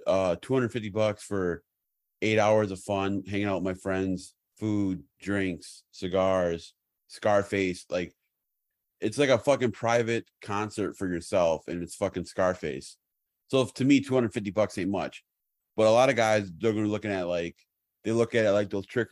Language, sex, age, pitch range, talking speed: English, male, 30-49, 90-110 Hz, 190 wpm